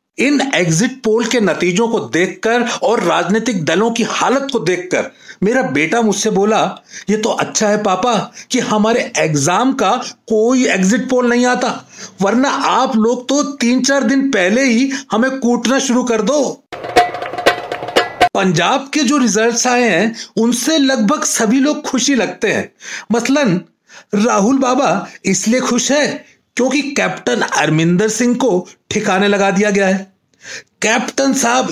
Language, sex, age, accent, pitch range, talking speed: Hindi, male, 40-59, native, 205-255 Hz, 145 wpm